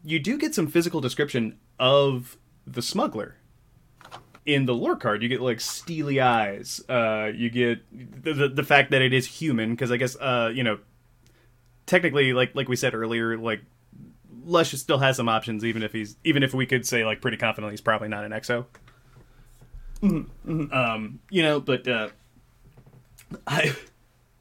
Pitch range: 120-145 Hz